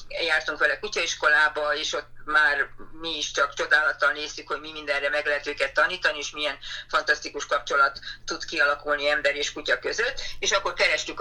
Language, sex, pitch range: Hungarian, female, 145-170 Hz